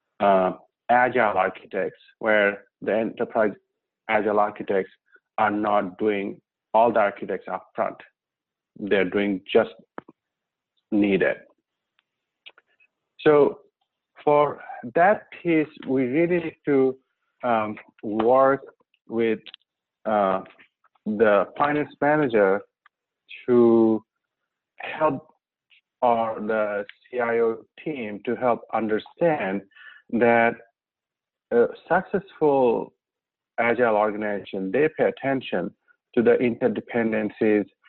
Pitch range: 100-130 Hz